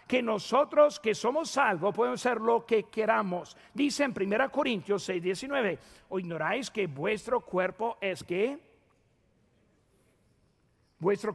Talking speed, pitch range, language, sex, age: 125 wpm, 195-245 Hz, Spanish, male, 50-69